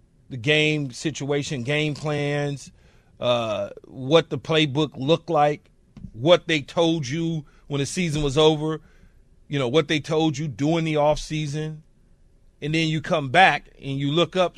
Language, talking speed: English, 155 wpm